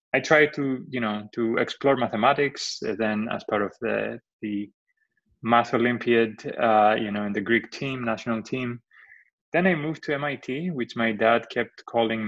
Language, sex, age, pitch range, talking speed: English, male, 20-39, 105-125 Hz, 175 wpm